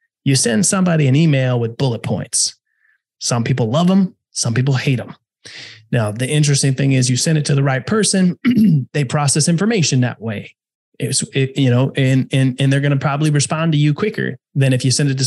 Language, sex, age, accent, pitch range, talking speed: English, male, 20-39, American, 130-170 Hz, 210 wpm